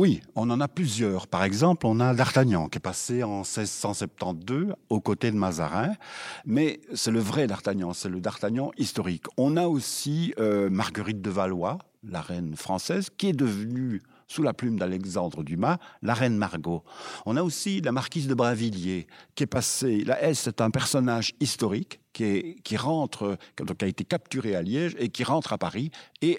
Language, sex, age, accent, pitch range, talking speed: French, male, 60-79, French, 95-135 Hz, 185 wpm